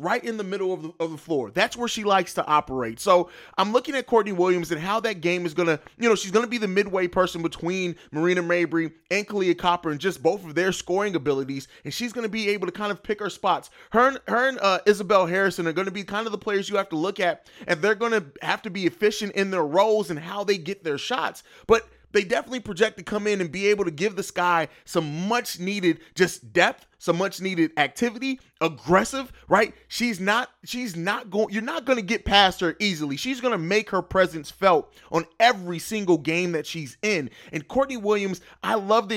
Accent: American